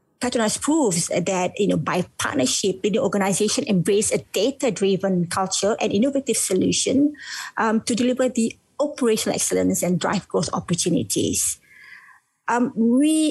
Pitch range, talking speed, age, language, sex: 195-260 Hz, 130 wpm, 50-69, English, female